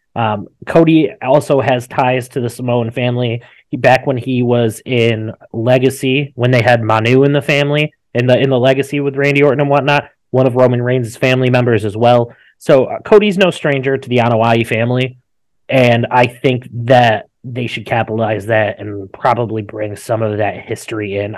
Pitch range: 110-130 Hz